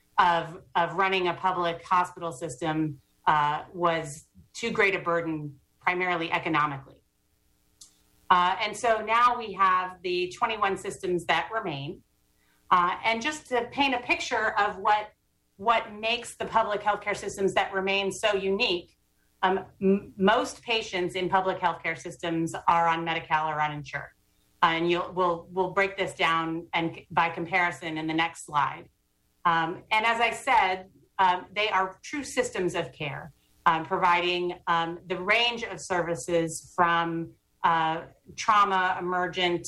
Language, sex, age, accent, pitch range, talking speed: English, female, 30-49, American, 165-205 Hz, 145 wpm